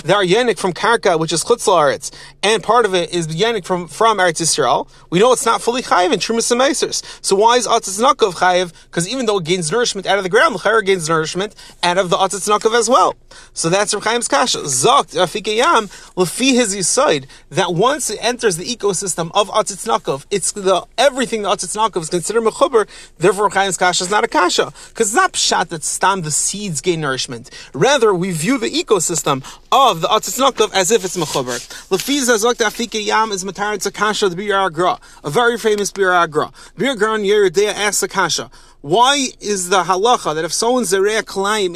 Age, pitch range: 30-49, 180-235 Hz